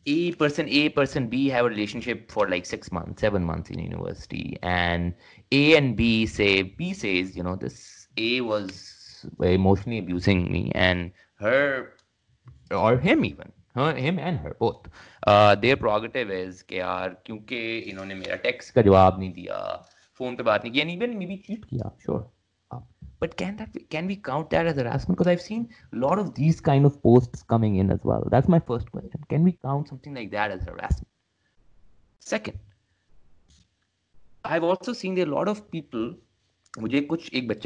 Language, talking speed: English, 165 wpm